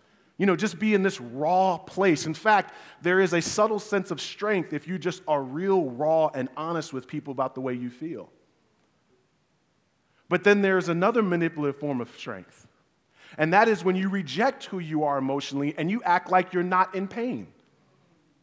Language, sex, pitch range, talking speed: English, male, 140-175 Hz, 190 wpm